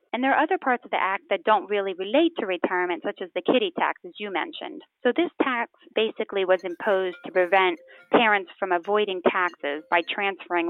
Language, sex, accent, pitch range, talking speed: English, female, American, 180-235 Hz, 200 wpm